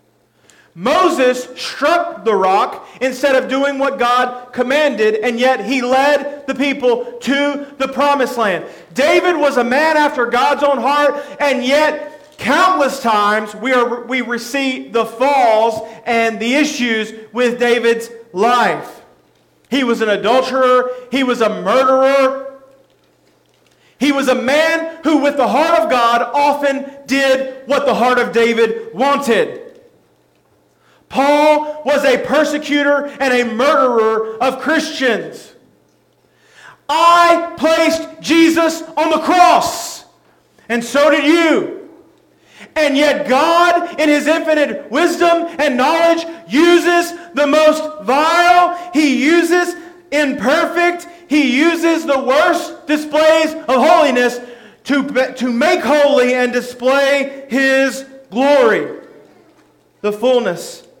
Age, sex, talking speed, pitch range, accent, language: 40-59, male, 120 wpm, 250-315 Hz, American, English